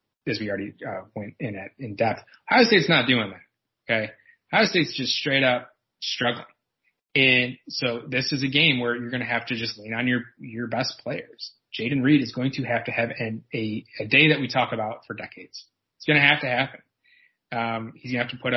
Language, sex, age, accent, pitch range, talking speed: English, male, 30-49, American, 115-140 Hz, 230 wpm